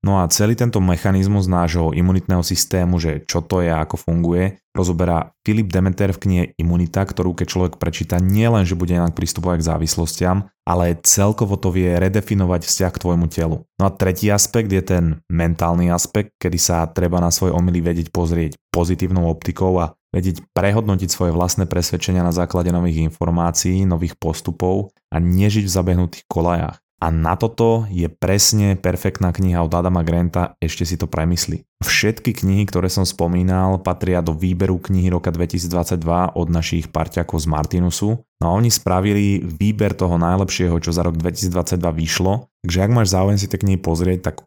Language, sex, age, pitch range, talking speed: Slovak, male, 20-39, 85-95 Hz, 175 wpm